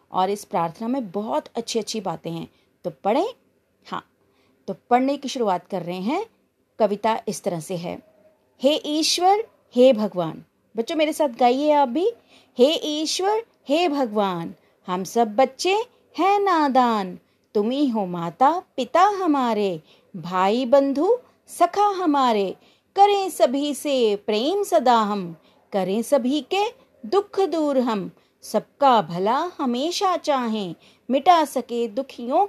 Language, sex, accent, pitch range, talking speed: Hindi, female, native, 210-330 Hz, 135 wpm